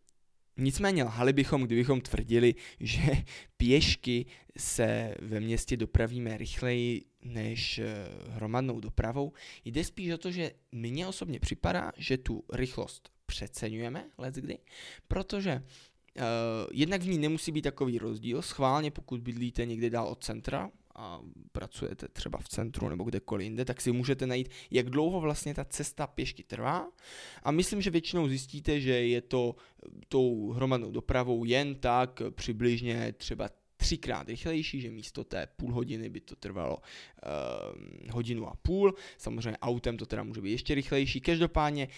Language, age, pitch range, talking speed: Czech, 20-39, 115-140 Hz, 145 wpm